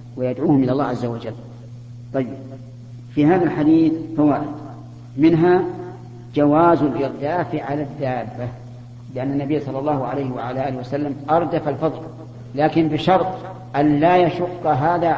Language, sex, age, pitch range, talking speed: Arabic, female, 40-59, 120-160 Hz, 125 wpm